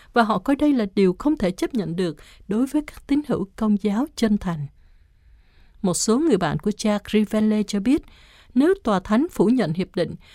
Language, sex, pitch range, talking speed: Vietnamese, female, 180-250 Hz, 210 wpm